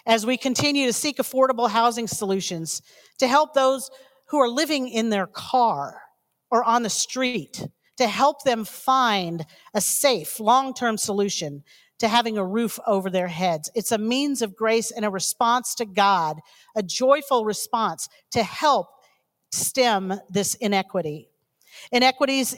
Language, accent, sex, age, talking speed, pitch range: English, American, female, 50-69, 145 wpm, 200-255 Hz